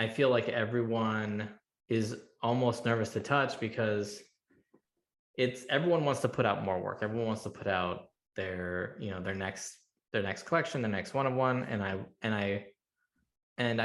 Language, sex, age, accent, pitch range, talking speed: English, male, 20-39, American, 95-120 Hz, 180 wpm